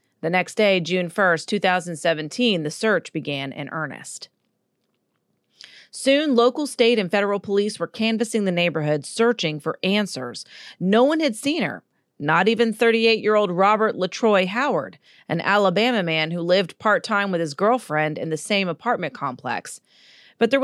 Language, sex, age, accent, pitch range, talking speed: English, female, 40-59, American, 165-230 Hz, 150 wpm